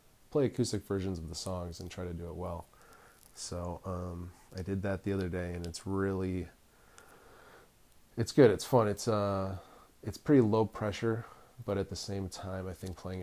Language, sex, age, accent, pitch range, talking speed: English, male, 20-39, American, 90-100 Hz, 185 wpm